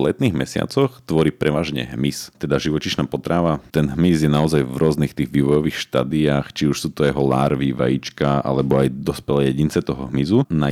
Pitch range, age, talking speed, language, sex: 70-75 Hz, 40-59, 175 wpm, Slovak, male